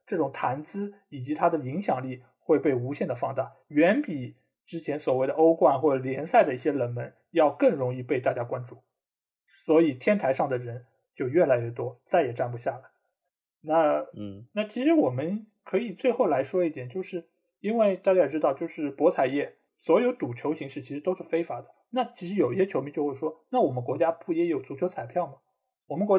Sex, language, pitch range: male, Chinese, 135-195 Hz